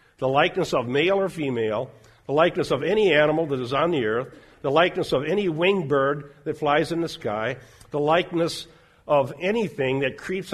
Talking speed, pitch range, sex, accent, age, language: 190 wpm, 140-180 Hz, male, American, 50-69, English